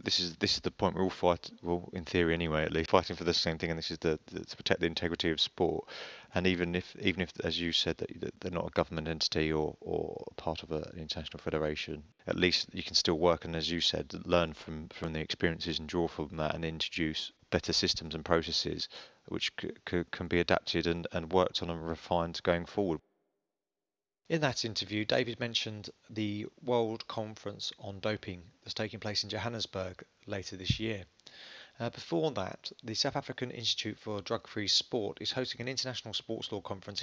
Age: 30-49